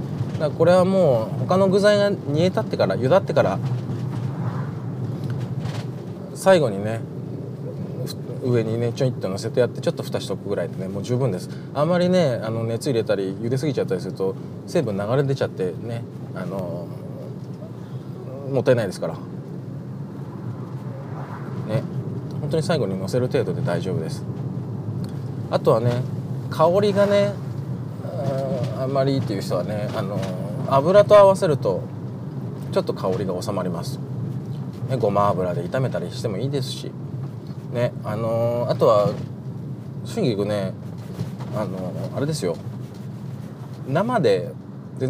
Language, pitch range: Japanese, 125-155 Hz